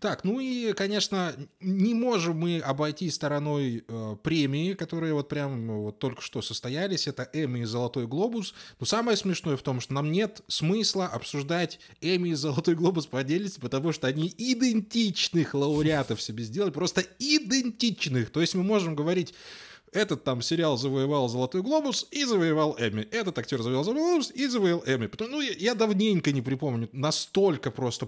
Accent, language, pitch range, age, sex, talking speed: native, Russian, 125-180 Hz, 20-39, male, 165 wpm